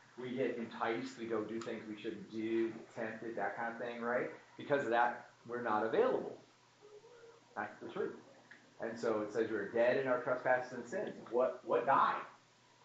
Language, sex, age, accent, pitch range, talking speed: English, male, 40-59, American, 115-140 Hz, 180 wpm